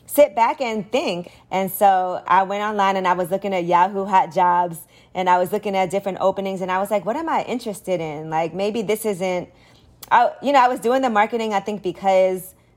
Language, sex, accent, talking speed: English, female, American, 225 wpm